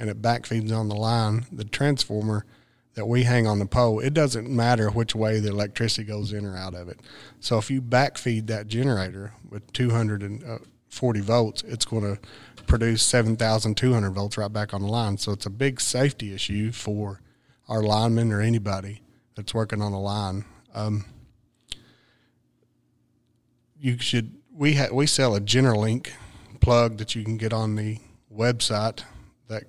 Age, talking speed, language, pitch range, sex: 40-59, 160 wpm, English, 105-115 Hz, male